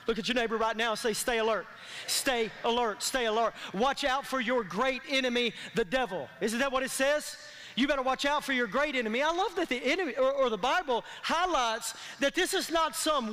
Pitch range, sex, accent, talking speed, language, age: 255-320 Hz, male, American, 225 wpm, English, 40-59